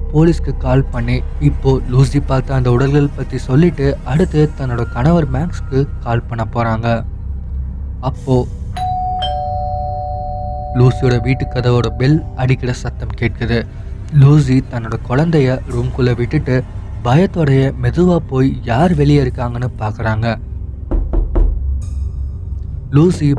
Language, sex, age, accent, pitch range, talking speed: Tamil, male, 20-39, native, 110-135 Hz, 95 wpm